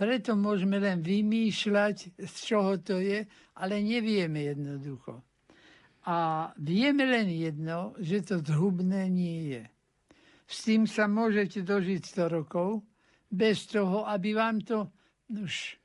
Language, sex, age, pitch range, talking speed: Slovak, male, 60-79, 180-215 Hz, 125 wpm